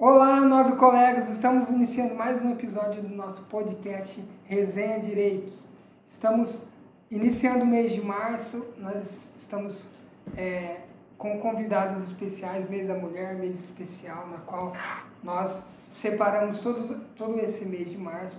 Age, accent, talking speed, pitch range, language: 20-39, Brazilian, 130 wpm, 180-210 Hz, Portuguese